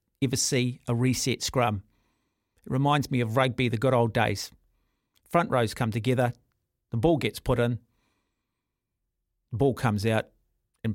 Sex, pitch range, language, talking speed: male, 105-130 Hz, English, 155 wpm